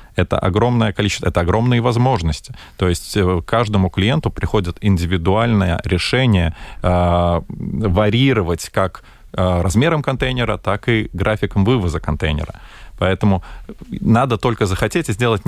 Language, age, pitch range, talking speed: Russian, 20-39, 90-115 Hz, 110 wpm